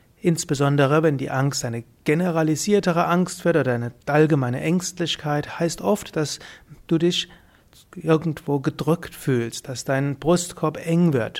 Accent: German